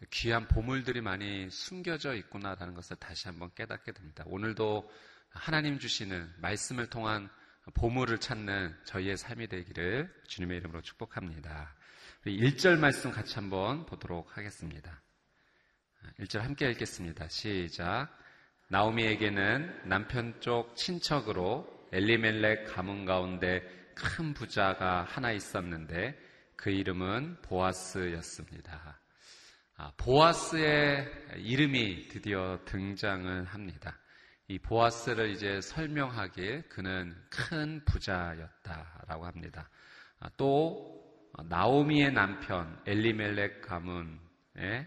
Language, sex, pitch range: Korean, male, 90-130 Hz